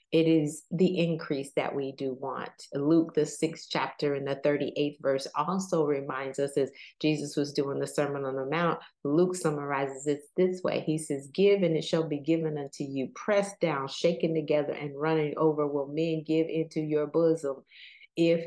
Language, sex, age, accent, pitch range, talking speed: English, female, 30-49, American, 145-165 Hz, 185 wpm